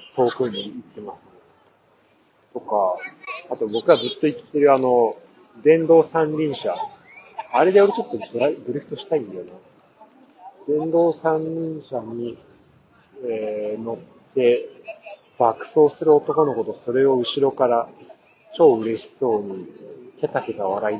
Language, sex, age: Japanese, male, 40-59